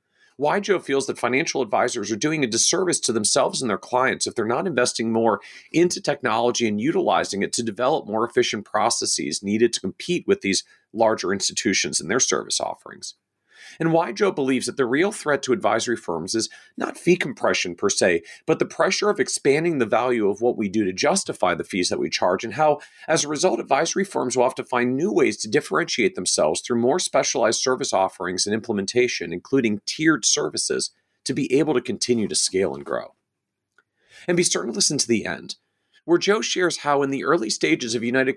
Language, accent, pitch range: English, American, 115-170 Hz